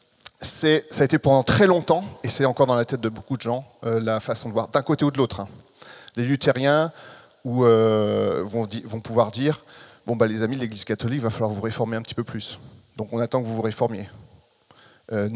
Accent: French